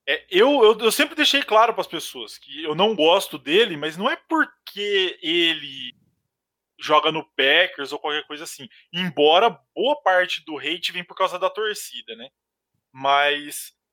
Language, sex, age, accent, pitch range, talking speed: Portuguese, male, 20-39, Brazilian, 145-205 Hz, 170 wpm